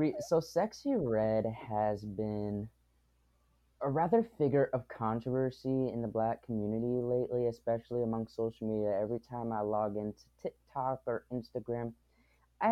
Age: 20-39